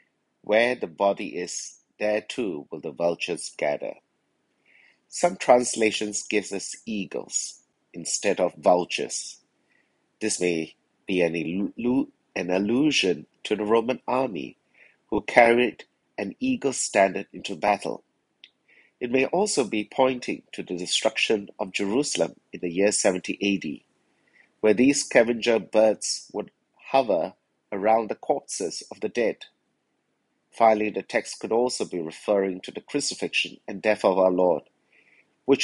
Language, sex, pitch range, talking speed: English, male, 95-125 Hz, 130 wpm